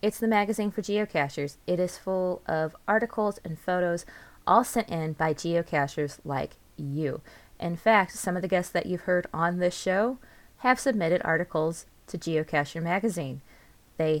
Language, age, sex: English, 20-39, female